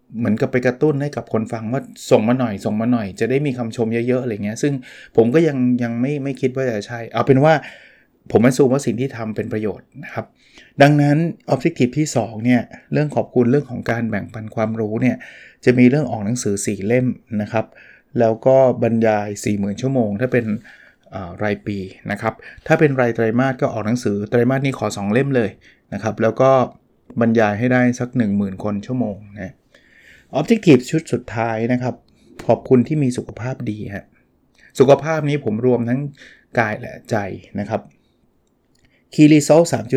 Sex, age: male, 20-39